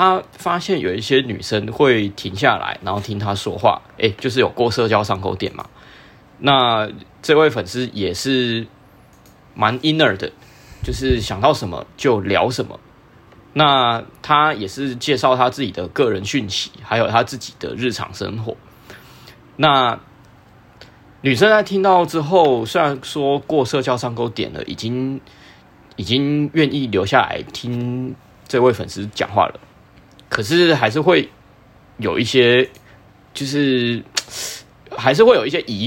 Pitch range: 105-140 Hz